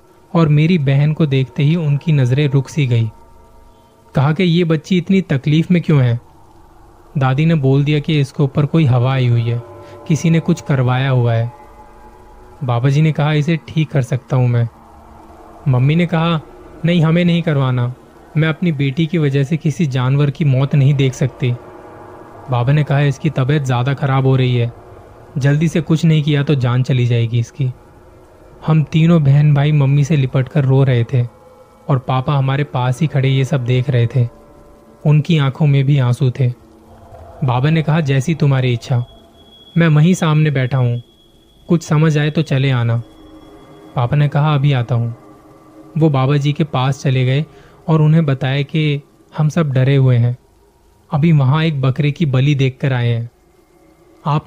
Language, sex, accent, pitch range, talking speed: Hindi, male, native, 120-155 Hz, 180 wpm